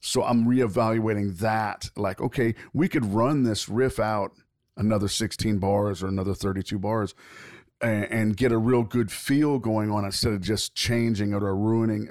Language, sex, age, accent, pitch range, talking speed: English, male, 40-59, American, 100-115 Hz, 175 wpm